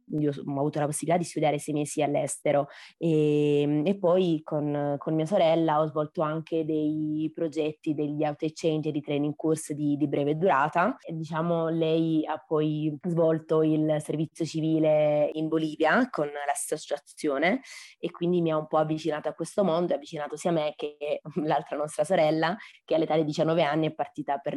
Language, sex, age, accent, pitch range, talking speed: Italian, female, 20-39, native, 150-160 Hz, 175 wpm